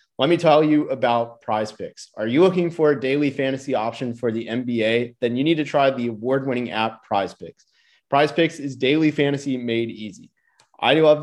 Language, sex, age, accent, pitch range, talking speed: English, male, 30-49, American, 115-145 Hz, 205 wpm